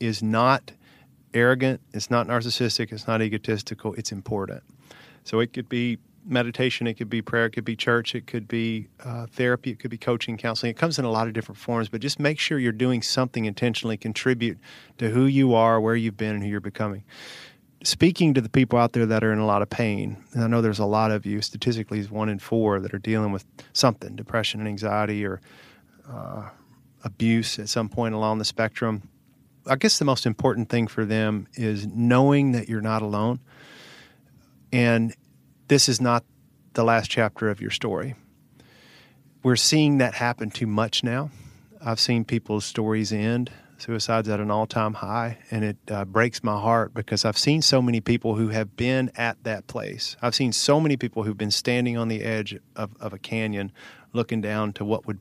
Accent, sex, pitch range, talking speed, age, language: American, male, 110-120 Hz, 200 wpm, 40-59, English